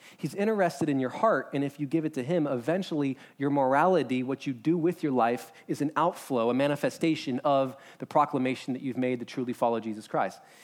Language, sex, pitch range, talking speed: English, male, 145-195 Hz, 210 wpm